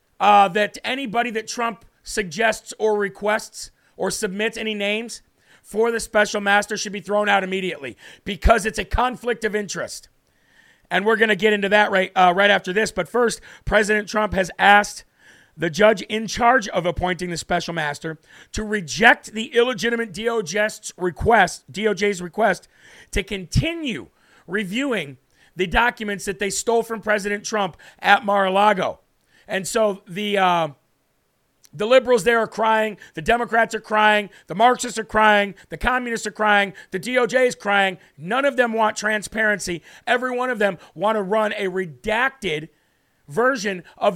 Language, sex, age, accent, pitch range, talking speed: English, male, 40-59, American, 195-230 Hz, 160 wpm